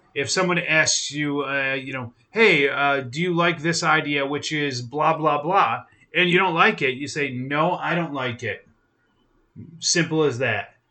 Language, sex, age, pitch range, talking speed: English, male, 30-49, 135-175 Hz, 185 wpm